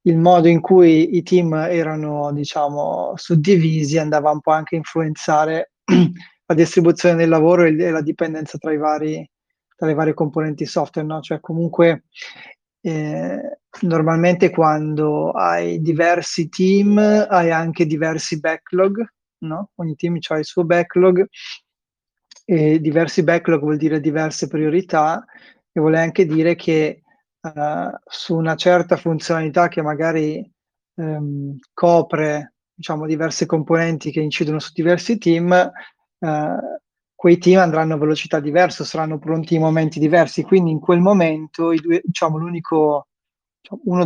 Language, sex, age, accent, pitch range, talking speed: Italian, male, 20-39, native, 155-175 Hz, 130 wpm